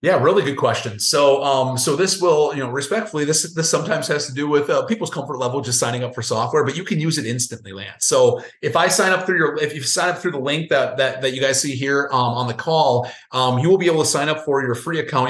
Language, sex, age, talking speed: English, male, 30-49, 285 wpm